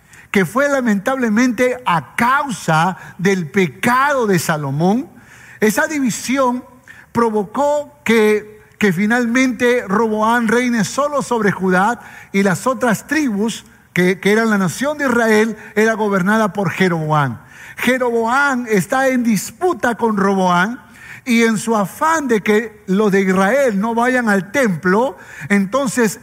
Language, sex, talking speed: Spanish, male, 125 wpm